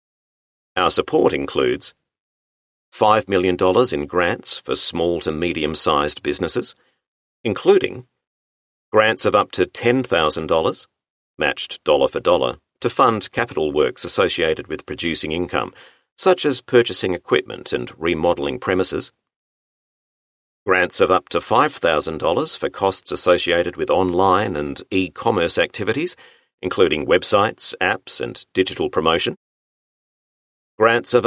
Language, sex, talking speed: English, male, 110 wpm